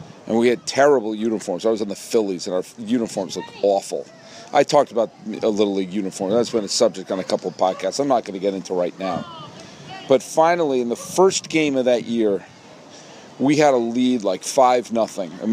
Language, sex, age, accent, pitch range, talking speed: English, male, 40-59, American, 115-140 Hz, 215 wpm